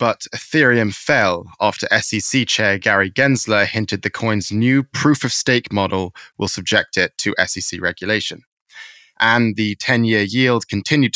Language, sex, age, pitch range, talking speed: English, male, 10-29, 100-120 Hz, 135 wpm